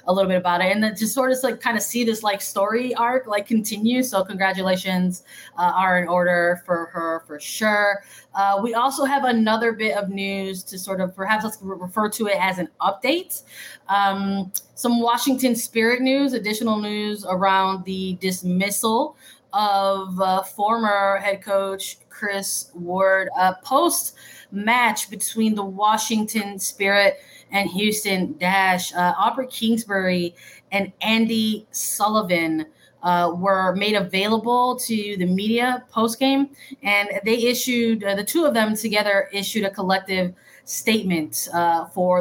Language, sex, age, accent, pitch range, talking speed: English, female, 20-39, American, 190-225 Hz, 150 wpm